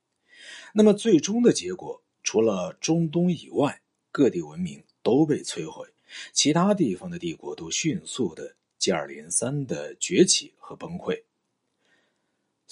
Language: Chinese